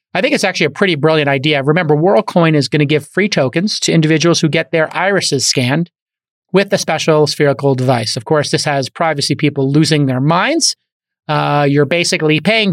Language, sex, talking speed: English, male, 195 wpm